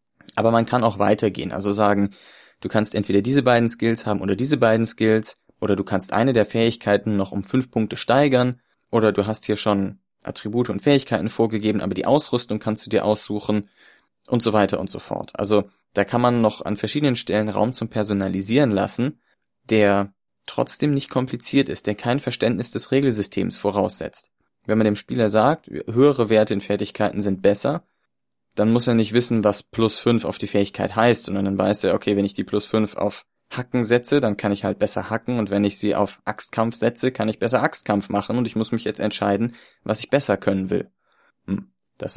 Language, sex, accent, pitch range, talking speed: German, male, German, 100-120 Hz, 200 wpm